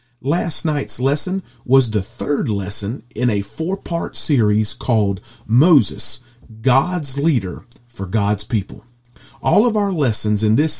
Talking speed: 135 wpm